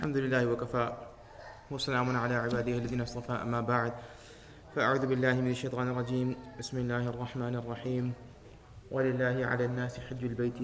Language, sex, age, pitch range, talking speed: English, male, 20-39, 115-125 Hz, 135 wpm